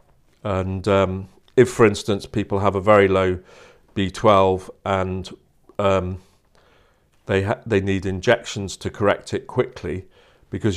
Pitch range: 95-105 Hz